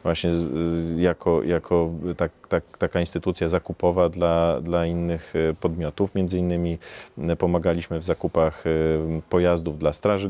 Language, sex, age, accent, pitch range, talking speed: Polish, male, 40-59, native, 85-95 Hz, 115 wpm